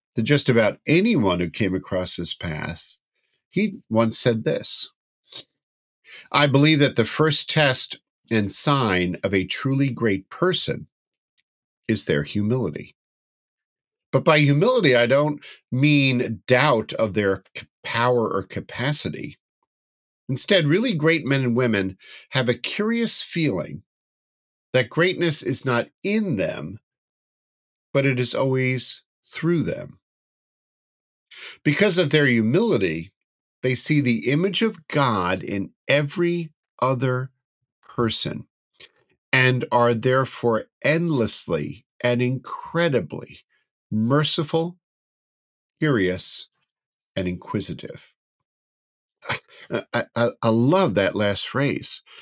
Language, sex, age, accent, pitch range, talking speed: English, male, 50-69, American, 110-150 Hz, 110 wpm